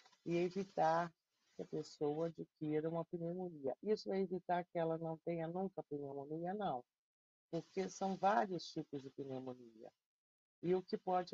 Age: 50-69